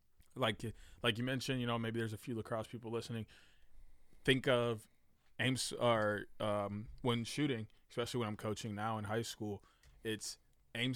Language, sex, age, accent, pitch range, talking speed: English, male, 20-39, American, 110-130 Hz, 165 wpm